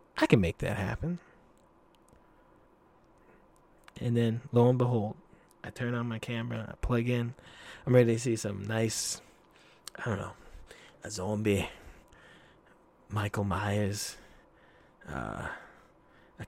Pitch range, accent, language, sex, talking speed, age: 100-120 Hz, American, English, male, 120 wpm, 20-39